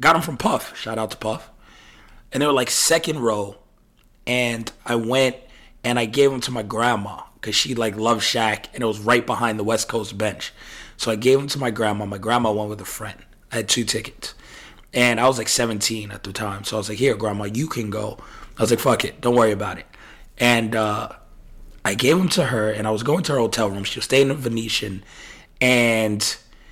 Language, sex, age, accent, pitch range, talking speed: English, male, 30-49, American, 110-130 Hz, 230 wpm